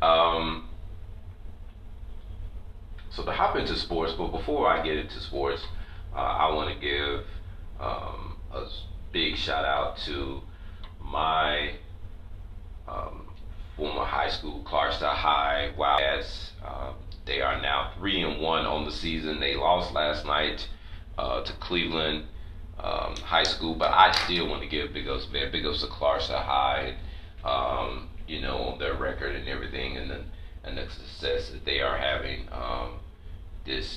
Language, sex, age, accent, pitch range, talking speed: English, male, 30-49, American, 75-85 Hz, 145 wpm